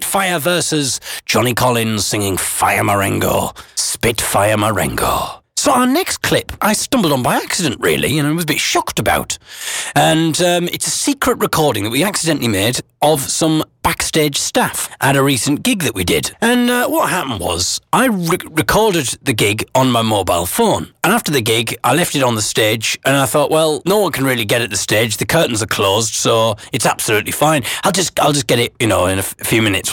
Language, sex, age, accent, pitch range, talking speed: English, male, 40-59, British, 115-165 Hz, 210 wpm